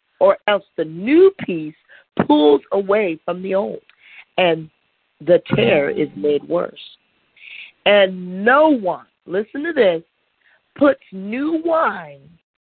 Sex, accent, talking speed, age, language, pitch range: female, American, 115 wpm, 50-69, English, 170-275 Hz